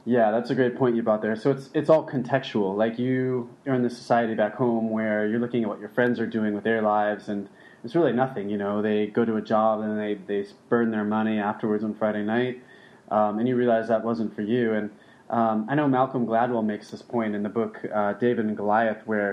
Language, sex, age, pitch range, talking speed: English, male, 20-39, 110-130 Hz, 245 wpm